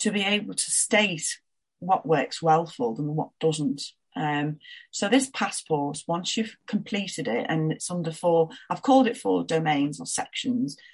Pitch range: 155-225 Hz